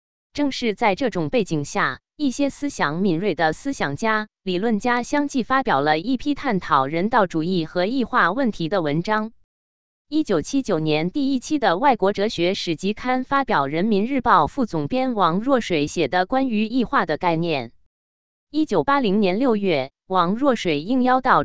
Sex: female